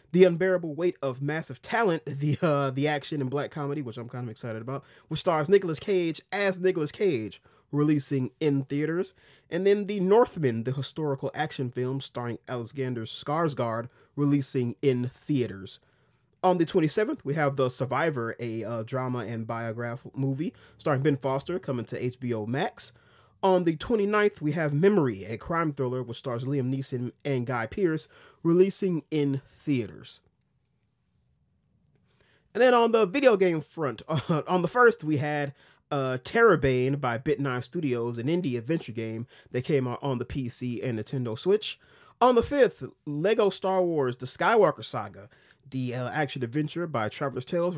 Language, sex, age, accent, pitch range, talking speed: English, male, 30-49, American, 125-165 Hz, 160 wpm